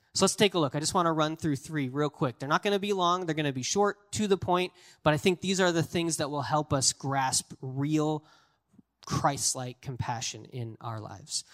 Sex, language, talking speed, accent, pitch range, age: male, English, 240 wpm, American, 130-170 Hz, 20-39